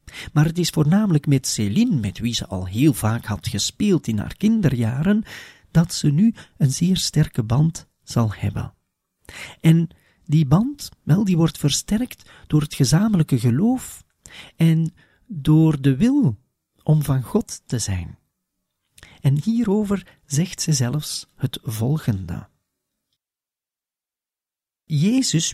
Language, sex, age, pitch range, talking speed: Dutch, male, 40-59, 115-170 Hz, 125 wpm